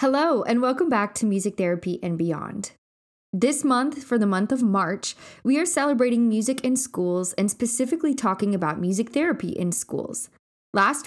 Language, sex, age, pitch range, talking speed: English, female, 20-39, 190-245 Hz, 170 wpm